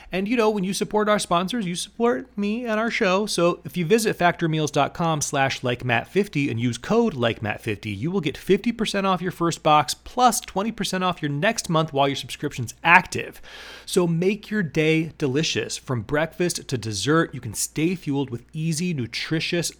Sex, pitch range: male, 125-175 Hz